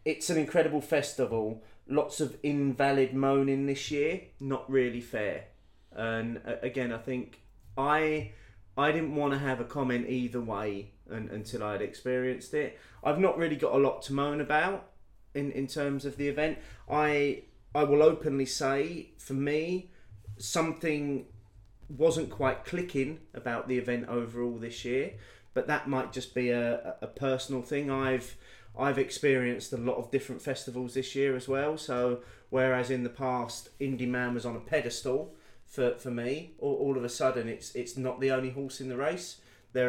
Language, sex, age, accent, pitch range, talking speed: English, male, 30-49, British, 120-145 Hz, 170 wpm